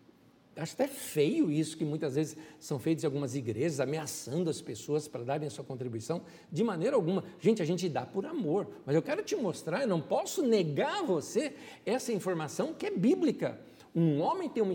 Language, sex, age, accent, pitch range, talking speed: Portuguese, male, 60-79, Brazilian, 140-205 Hz, 200 wpm